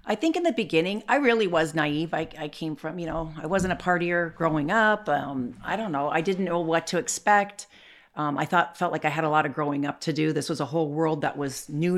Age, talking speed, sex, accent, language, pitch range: 40-59, 265 wpm, female, American, English, 145-180 Hz